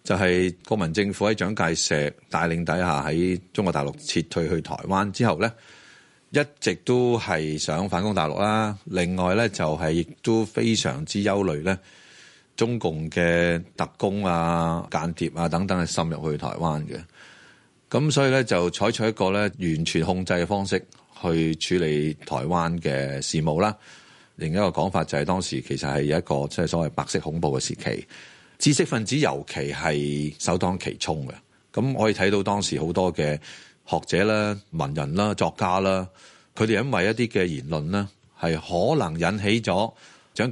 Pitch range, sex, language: 75-100 Hz, male, Chinese